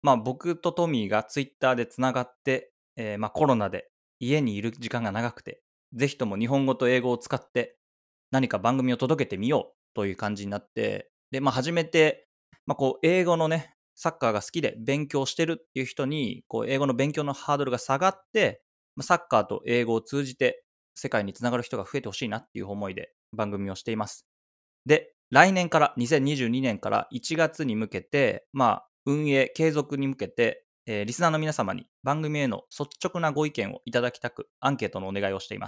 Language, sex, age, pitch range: English, male, 20-39, 105-150 Hz